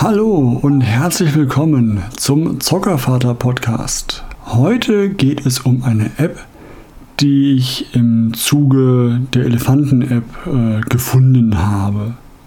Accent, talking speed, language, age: German, 95 wpm, German, 60-79